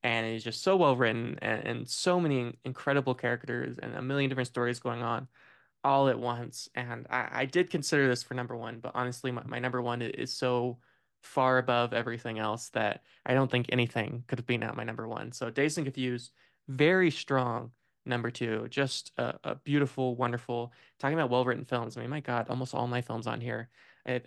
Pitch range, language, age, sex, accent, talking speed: 120-135 Hz, English, 20-39, male, American, 205 wpm